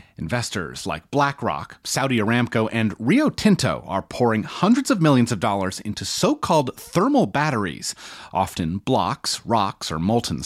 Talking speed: 140 wpm